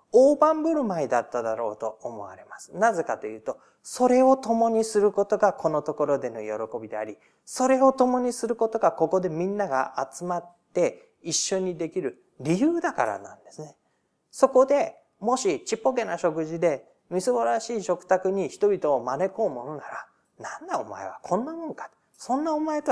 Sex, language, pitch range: male, Japanese, 175-275 Hz